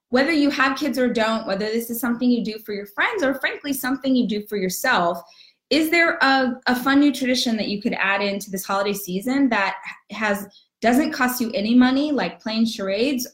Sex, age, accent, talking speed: female, 20-39, American, 210 wpm